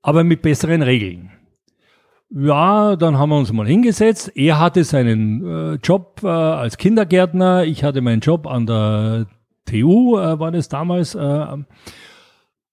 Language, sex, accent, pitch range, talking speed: German, male, German, 125-175 Hz, 145 wpm